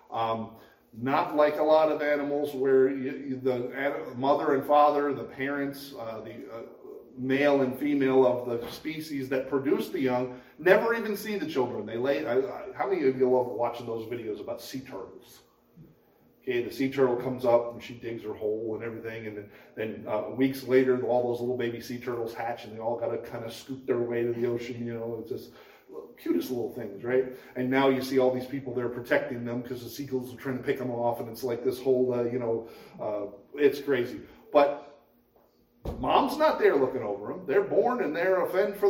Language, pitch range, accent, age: English, 120-145 Hz, American, 40-59